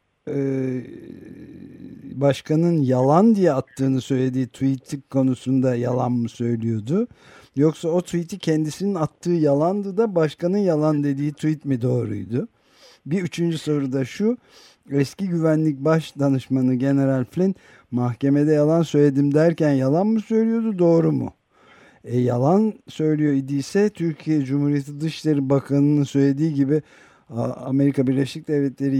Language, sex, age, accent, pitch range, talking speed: Turkish, male, 50-69, native, 130-160 Hz, 115 wpm